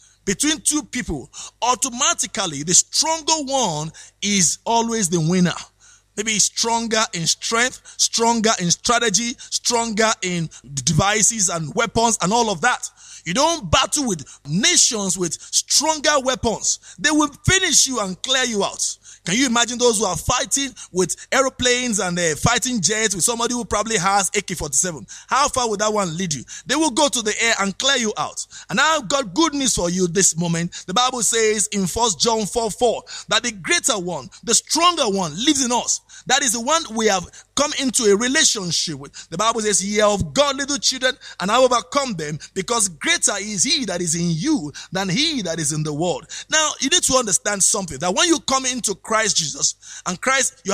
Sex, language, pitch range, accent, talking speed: male, English, 190-265 Hz, Nigerian, 190 wpm